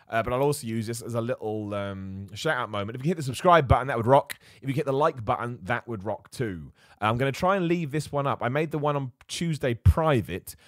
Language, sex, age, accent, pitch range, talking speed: English, male, 30-49, British, 105-145 Hz, 270 wpm